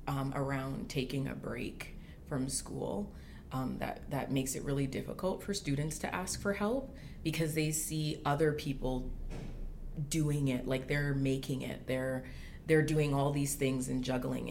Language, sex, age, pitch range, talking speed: English, female, 30-49, 130-150 Hz, 160 wpm